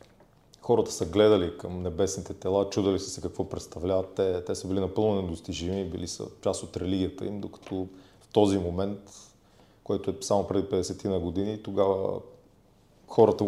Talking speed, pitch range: 160 wpm, 90-100 Hz